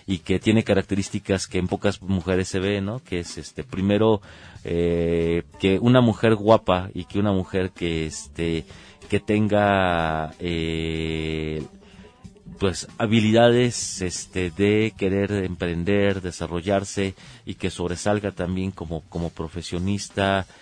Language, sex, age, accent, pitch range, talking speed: Spanish, male, 40-59, Mexican, 85-100 Hz, 125 wpm